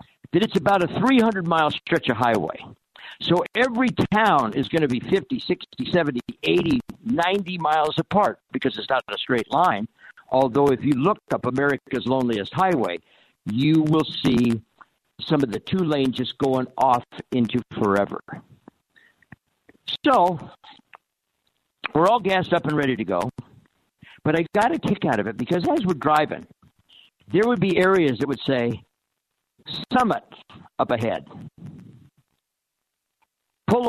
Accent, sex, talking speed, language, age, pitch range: American, male, 145 wpm, English, 60-79, 140-200 Hz